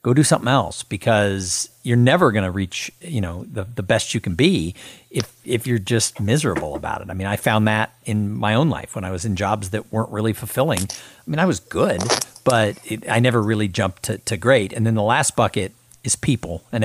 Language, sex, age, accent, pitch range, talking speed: English, male, 50-69, American, 105-130 Hz, 230 wpm